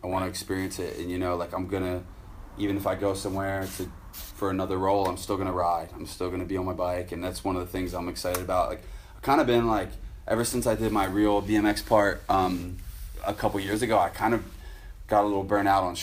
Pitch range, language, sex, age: 90-105 Hz, English, male, 20-39